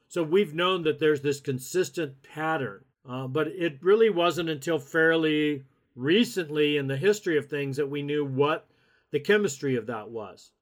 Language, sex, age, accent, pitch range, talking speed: English, male, 50-69, American, 135-160 Hz, 170 wpm